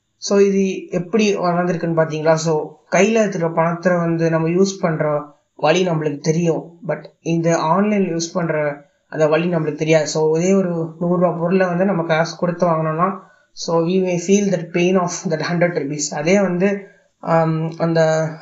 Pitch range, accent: 160-190 Hz, native